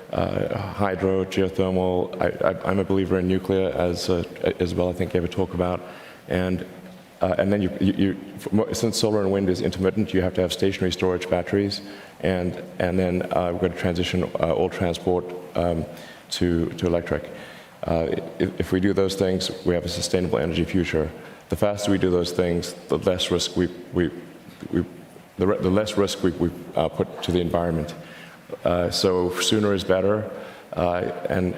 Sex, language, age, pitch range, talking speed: male, English, 30-49, 85-95 Hz, 190 wpm